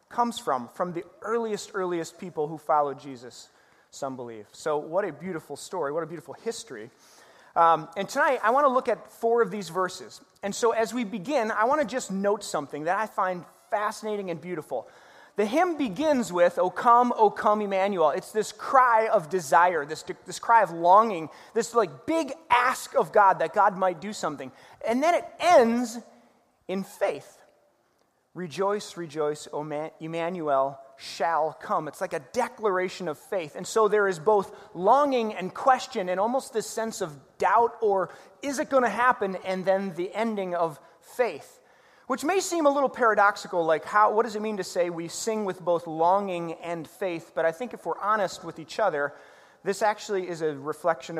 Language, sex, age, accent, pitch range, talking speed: English, male, 30-49, American, 165-225 Hz, 185 wpm